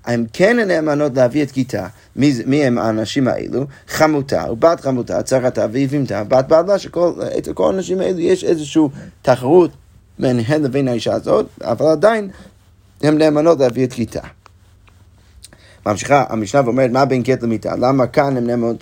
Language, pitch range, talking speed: Hebrew, 120-160 Hz, 150 wpm